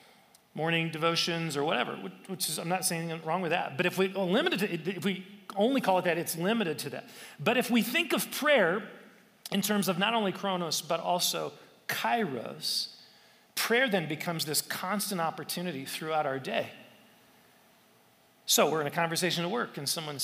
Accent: American